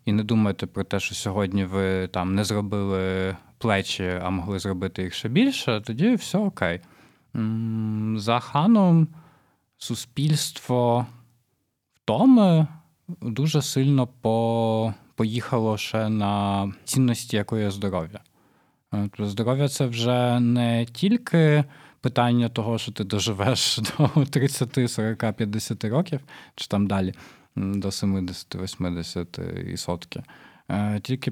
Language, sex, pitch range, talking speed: Ukrainian, male, 95-125 Hz, 110 wpm